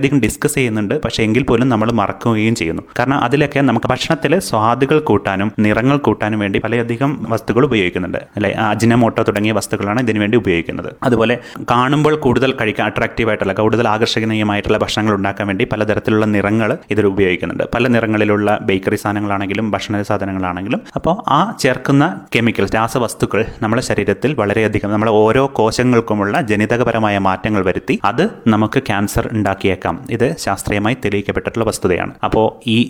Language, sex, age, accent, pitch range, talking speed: Malayalam, male, 30-49, native, 105-125 Hz, 130 wpm